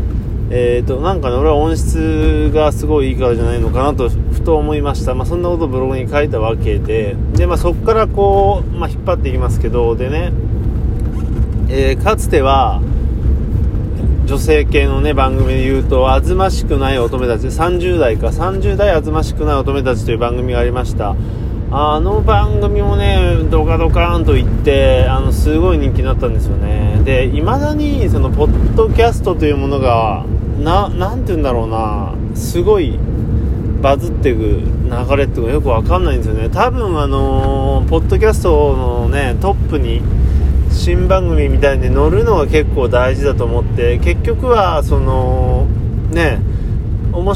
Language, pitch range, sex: Japanese, 85-115 Hz, male